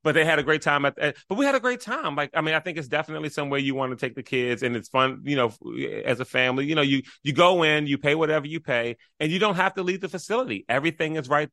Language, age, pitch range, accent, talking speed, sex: English, 30-49, 115-150 Hz, American, 300 wpm, male